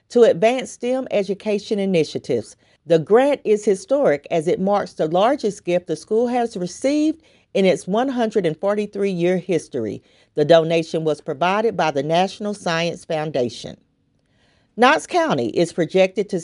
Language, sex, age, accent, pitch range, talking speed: English, female, 40-59, American, 165-215 Hz, 140 wpm